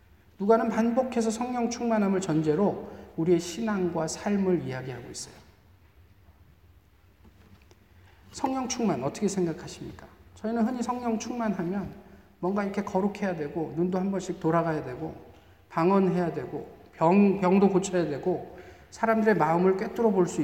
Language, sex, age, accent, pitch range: Korean, male, 40-59, native, 140-225 Hz